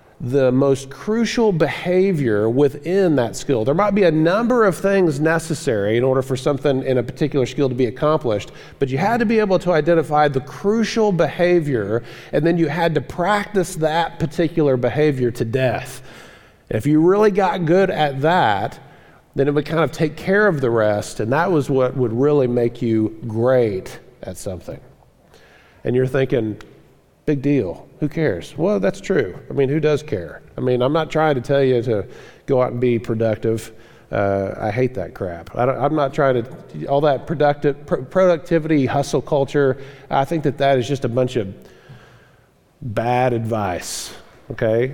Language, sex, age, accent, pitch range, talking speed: English, male, 40-59, American, 125-160 Hz, 180 wpm